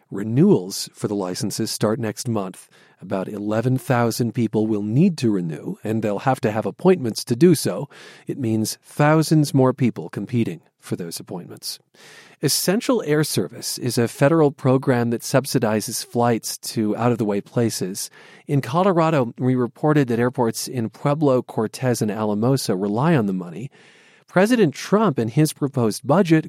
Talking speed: 150 wpm